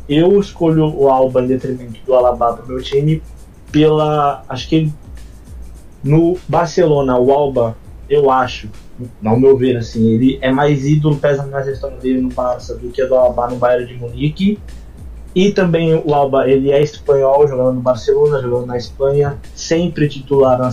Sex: male